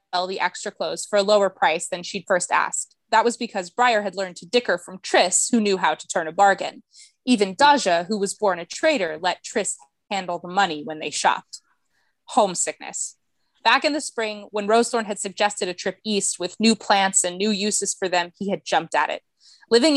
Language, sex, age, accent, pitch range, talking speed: English, female, 20-39, American, 185-220 Hz, 205 wpm